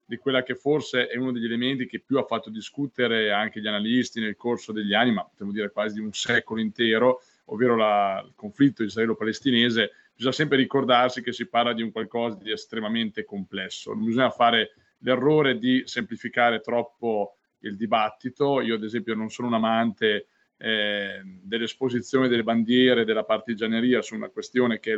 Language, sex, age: Italian, male, 30-49